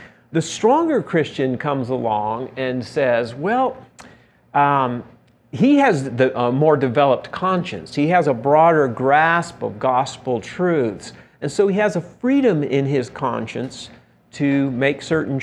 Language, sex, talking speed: English, male, 135 wpm